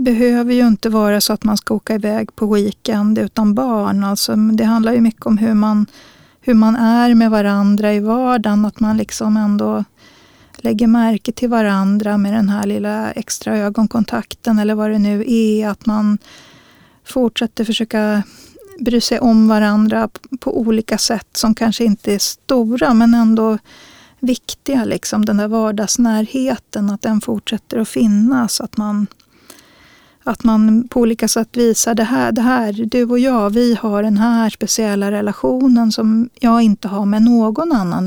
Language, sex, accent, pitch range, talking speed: Swedish, female, native, 210-235 Hz, 165 wpm